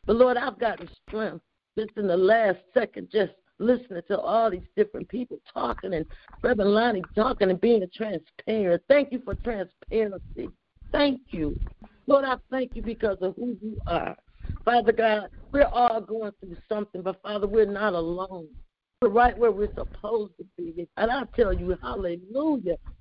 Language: English